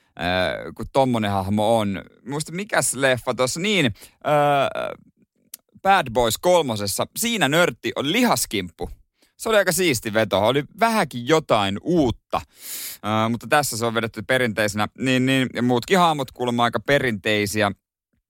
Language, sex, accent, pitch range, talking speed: Finnish, male, native, 100-160 Hz, 140 wpm